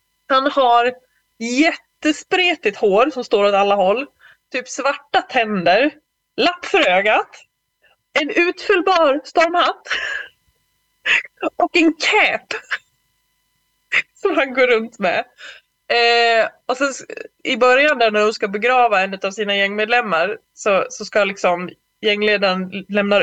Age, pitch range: 20-39, 205-305 Hz